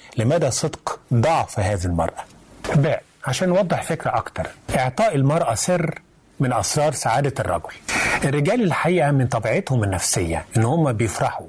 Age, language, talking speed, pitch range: 30-49, Arabic, 125 wpm, 110-145 Hz